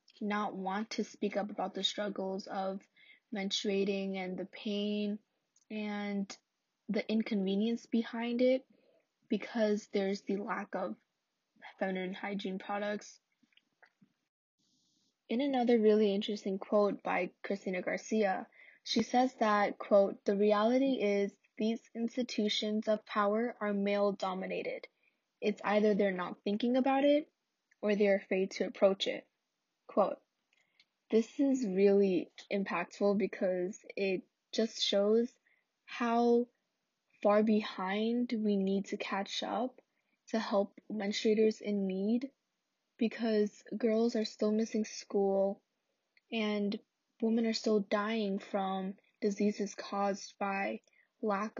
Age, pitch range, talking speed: 10-29, 200-230 Hz, 115 wpm